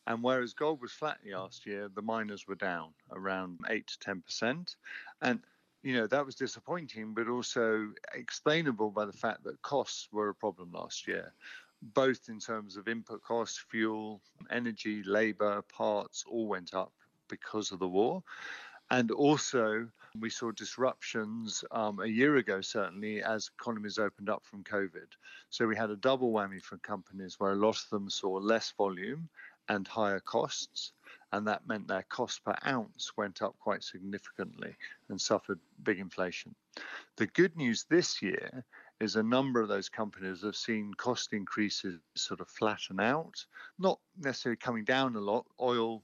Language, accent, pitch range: English, British, 100-120 Hz